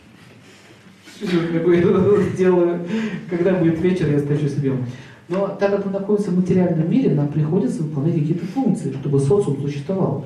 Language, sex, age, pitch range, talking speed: Russian, male, 40-59, 140-200 Hz, 135 wpm